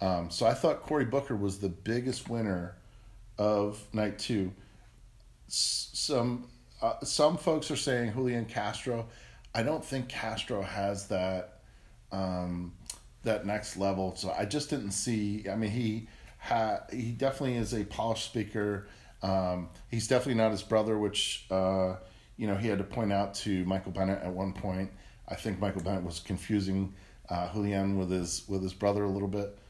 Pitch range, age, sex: 95-115 Hz, 40-59, male